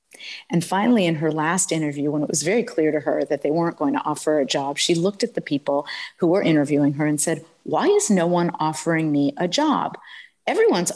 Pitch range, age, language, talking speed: 185-265 Hz, 50-69, English, 225 wpm